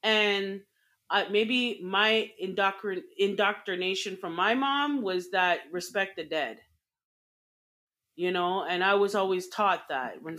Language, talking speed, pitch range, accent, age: English, 125 wpm, 180-225 Hz, American, 30-49